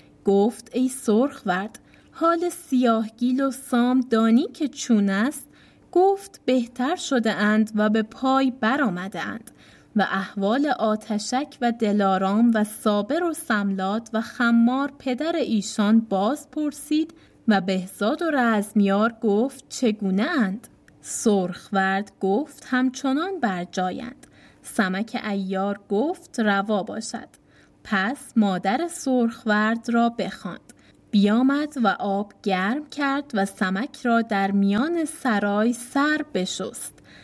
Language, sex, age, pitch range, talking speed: Persian, female, 20-39, 205-265 Hz, 110 wpm